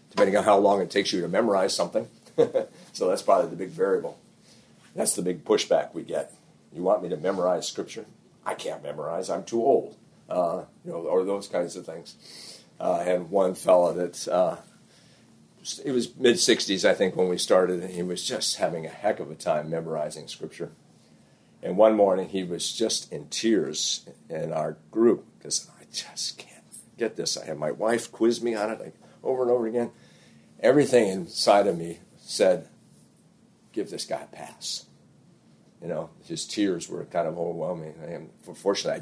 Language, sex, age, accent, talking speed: English, male, 50-69, American, 185 wpm